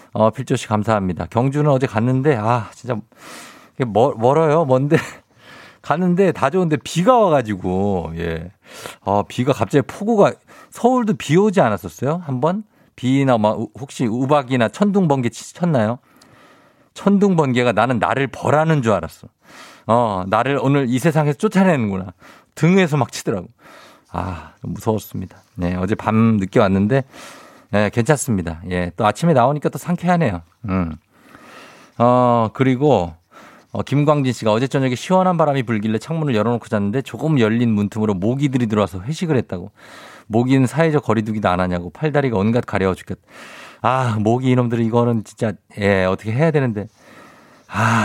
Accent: native